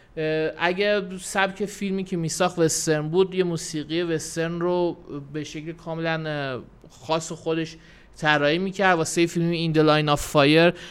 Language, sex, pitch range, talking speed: Persian, male, 155-190 Hz, 125 wpm